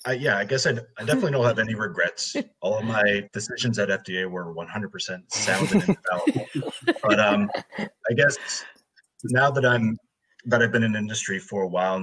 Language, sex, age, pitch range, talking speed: English, male, 30-49, 95-120 Hz, 200 wpm